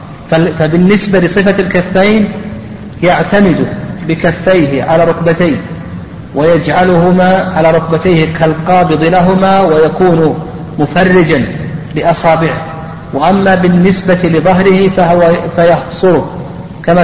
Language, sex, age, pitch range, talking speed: Arabic, male, 40-59, 155-180 Hz, 75 wpm